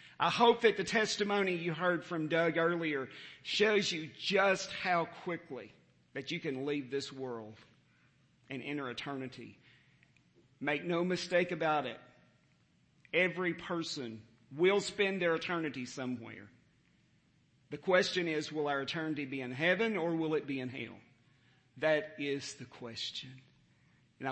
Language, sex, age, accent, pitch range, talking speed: English, male, 50-69, American, 130-165 Hz, 140 wpm